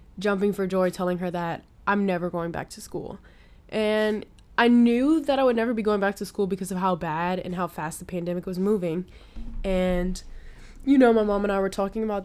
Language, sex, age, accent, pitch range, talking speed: English, female, 10-29, American, 180-215 Hz, 220 wpm